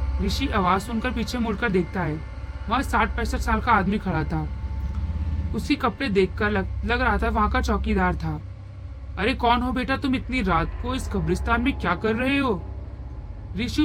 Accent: native